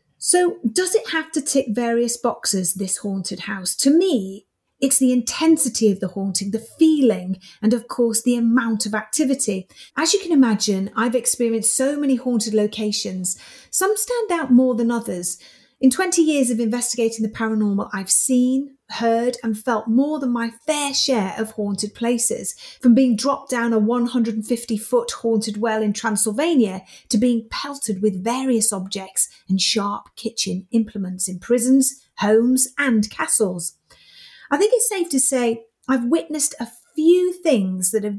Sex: female